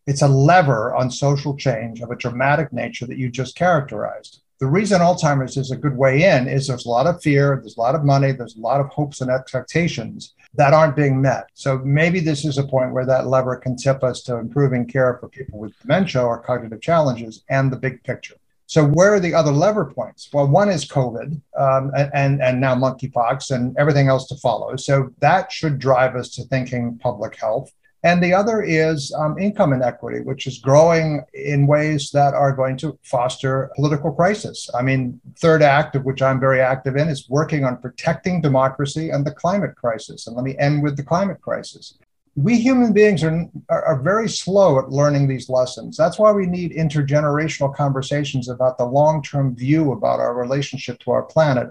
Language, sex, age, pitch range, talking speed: English, male, 50-69, 130-155 Hz, 200 wpm